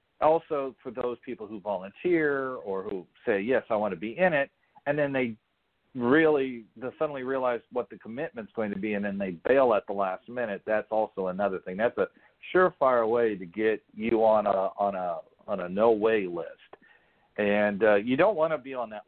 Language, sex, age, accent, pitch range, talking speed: English, male, 50-69, American, 105-140 Hz, 205 wpm